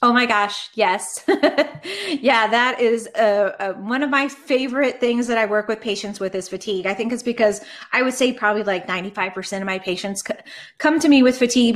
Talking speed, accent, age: 195 wpm, American, 20-39